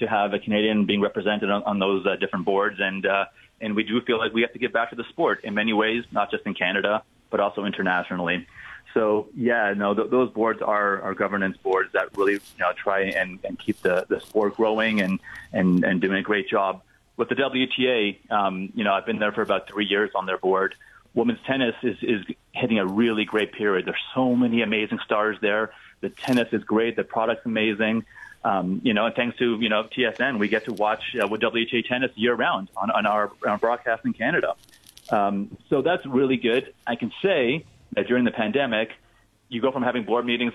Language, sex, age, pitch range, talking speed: English, male, 30-49, 100-120 Hz, 220 wpm